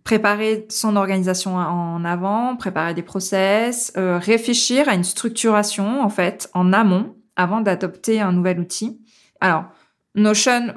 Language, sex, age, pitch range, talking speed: French, female, 20-39, 185-225 Hz, 135 wpm